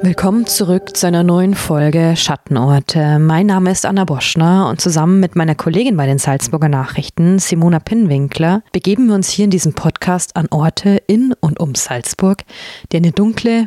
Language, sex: German, female